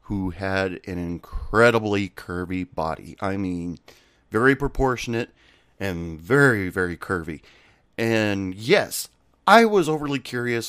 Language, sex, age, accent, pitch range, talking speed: English, male, 30-49, American, 95-125 Hz, 110 wpm